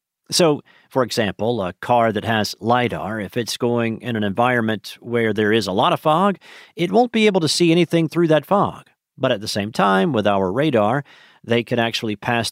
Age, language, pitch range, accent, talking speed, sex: 40-59, English, 105-135 Hz, American, 205 wpm, male